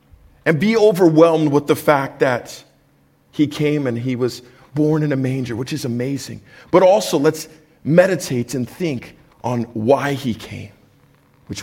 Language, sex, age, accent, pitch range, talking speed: English, male, 50-69, American, 105-135 Hz, 155 wpm